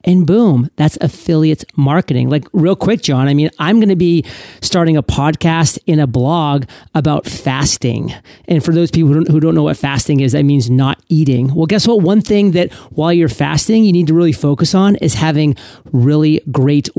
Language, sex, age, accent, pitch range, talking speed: English, male, 40-59, American, 140-175 Hz, 205 wpm